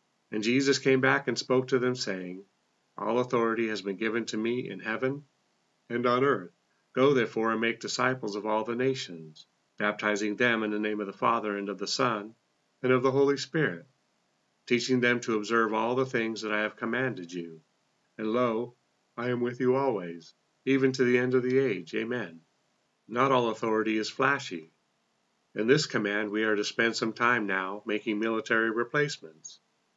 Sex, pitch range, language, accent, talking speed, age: male, 105-125 Hz, English, American, 185 wpm, 40-59